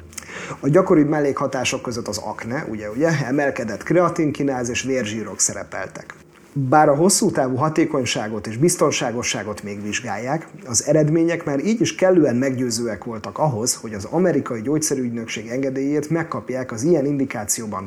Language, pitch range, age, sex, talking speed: Hungarian, 115-155 Hz, 30-49, male, 135 wpm